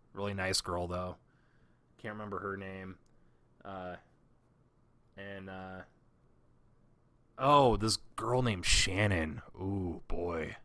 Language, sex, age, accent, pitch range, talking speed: English, male, 20-39, American, 90-110 Hz, 100 wpm